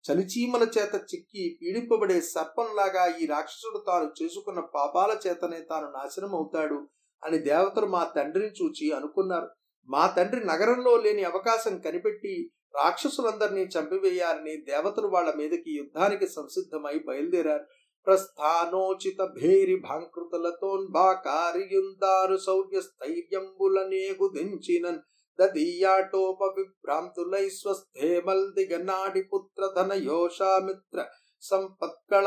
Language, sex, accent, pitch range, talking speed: Telugu, male, native, 175-235 Hz, 65 wpm